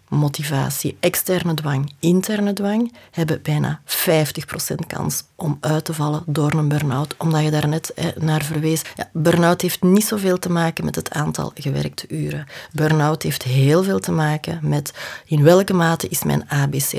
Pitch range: 155-190 Hz